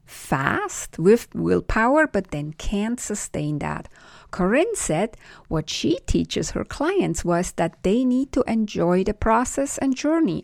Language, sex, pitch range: English, female, 180-255 Hz